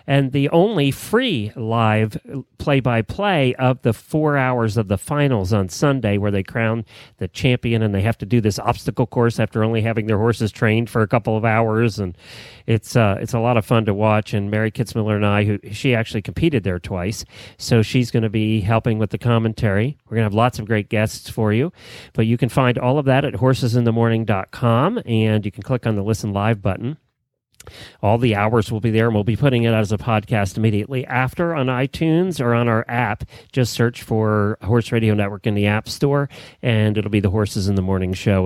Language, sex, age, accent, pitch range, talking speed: English, male, 40-59, American, 110-140 Hz, 215 wpm